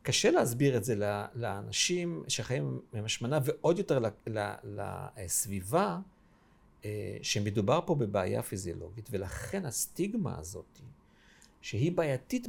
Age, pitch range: 50-69, 105-165 Hz